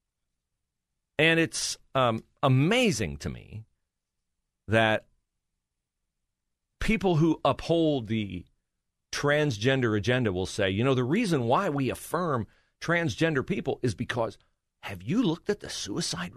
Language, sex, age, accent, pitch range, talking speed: English, male, 40-59, American, 85-140 Hz, 115 wpm